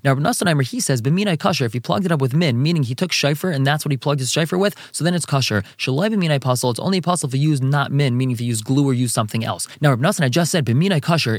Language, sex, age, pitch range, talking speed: English, male, 20-39, 130-165 Hz, 305 wpm